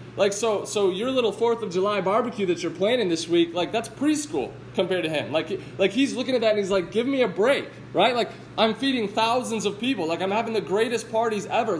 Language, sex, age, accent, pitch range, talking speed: English, male, 20-39, American, 170-225 Hz, 240 wpm